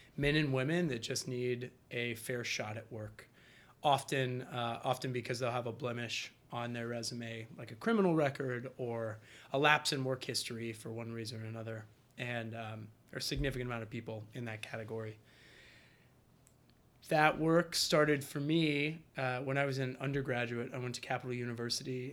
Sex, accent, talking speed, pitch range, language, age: male, American, 175 wpm, 120-140 Hz, English, 30-49